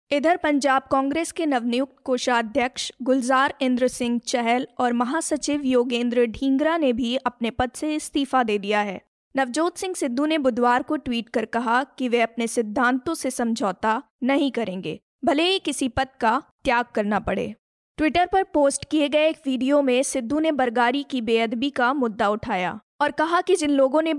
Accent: native